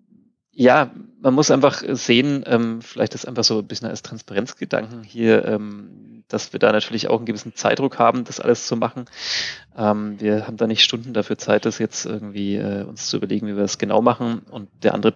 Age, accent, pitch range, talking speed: 30-49, German, 105-120 Hz, 190 wpm